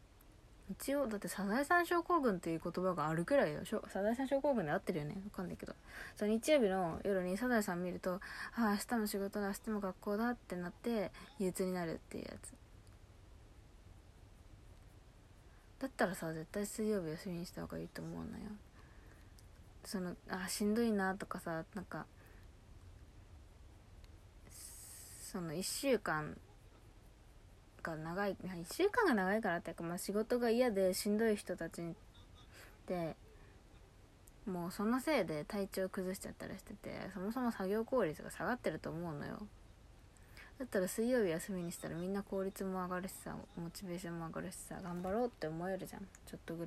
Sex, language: female, Japanese